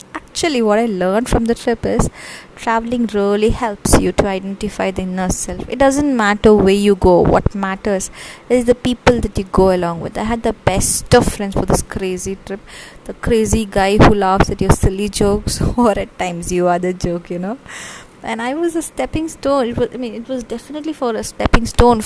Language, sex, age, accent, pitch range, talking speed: English, female, 20-39, Indian, 190-235 Hz, 210 wpm